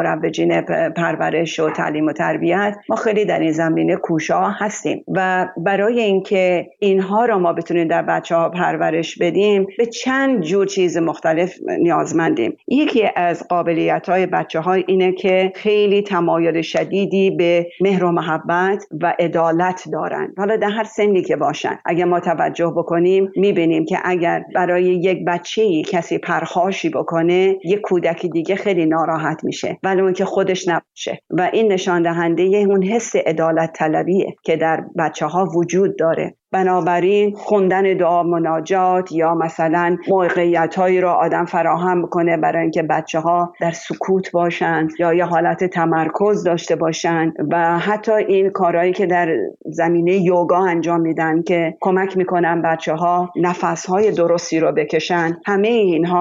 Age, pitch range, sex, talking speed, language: 50-69, 165-190 Hz, female, 145 wpm, Persian